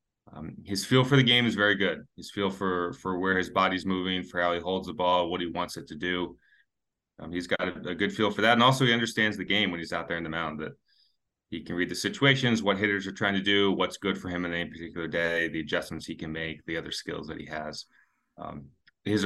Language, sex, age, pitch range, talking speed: English, male, 30-49, 85-105 Hz, 260 wpm